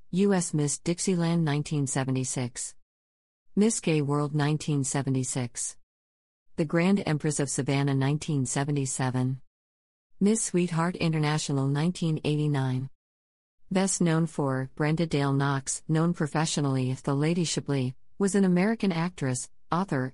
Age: 40-59